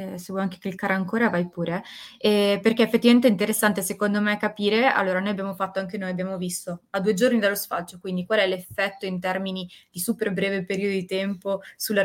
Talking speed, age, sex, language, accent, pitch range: 210 wpm, 20-39, female, Italian, native, 185-215 Hz